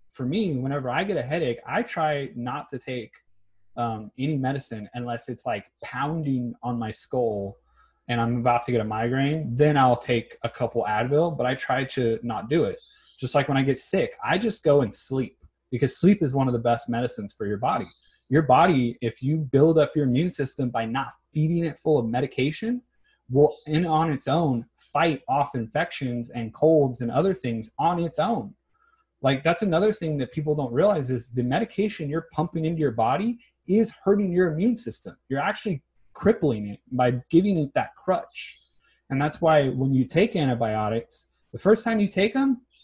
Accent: American